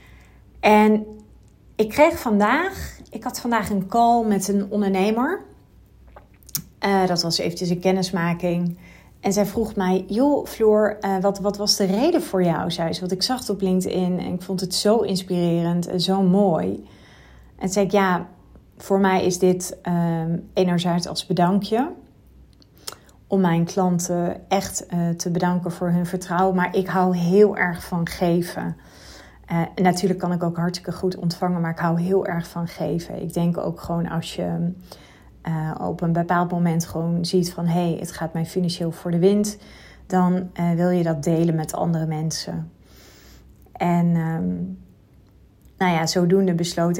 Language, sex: Dutch, female